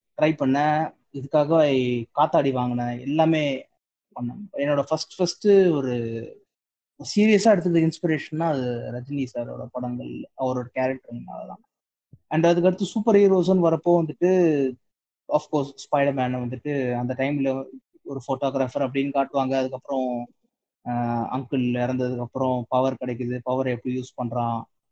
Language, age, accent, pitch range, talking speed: Tamil, 20-39, native, 125-175 Hz, 110 wpm